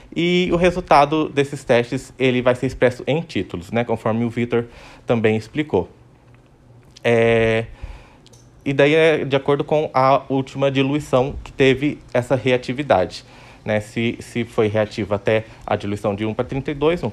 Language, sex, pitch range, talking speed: Portuguese, male, 115-140 Hz, 155 wpm